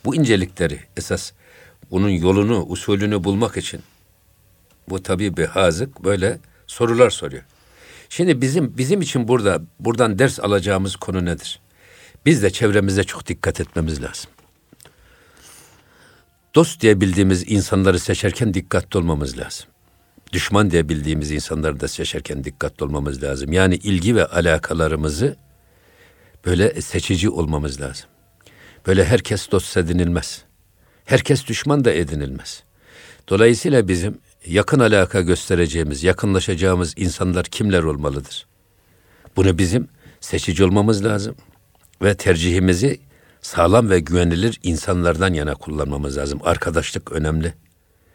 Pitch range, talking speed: 85-100 Hz, 110 wpm